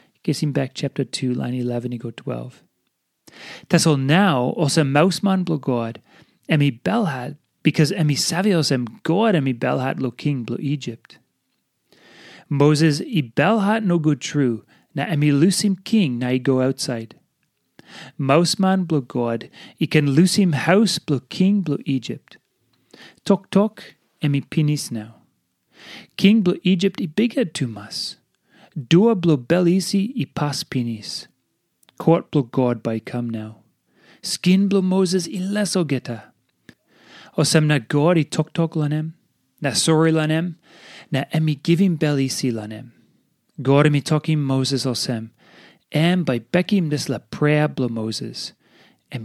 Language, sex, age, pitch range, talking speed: English, male, 30-49, 130-175 Hz, 135 wpm